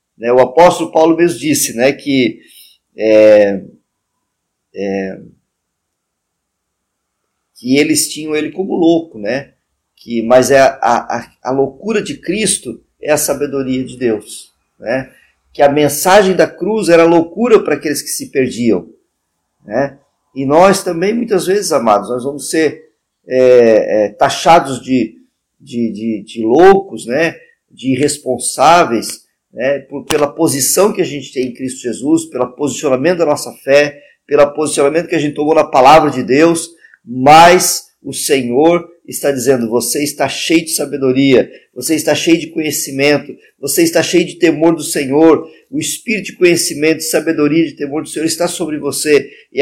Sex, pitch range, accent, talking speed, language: male, 135-170 Hz, Brazilian, 140 wpm, Portuguese